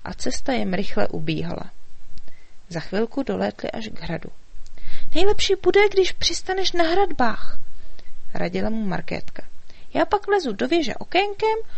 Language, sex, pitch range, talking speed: Czech, female, 180-300 Hz, 145 wpm